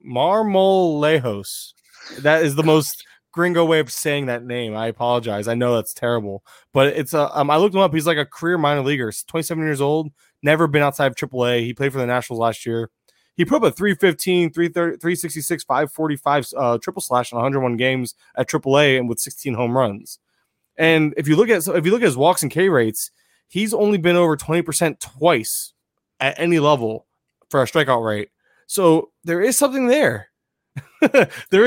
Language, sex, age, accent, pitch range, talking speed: English, male, 20-39, American, 130-170 Hz, 200 wpm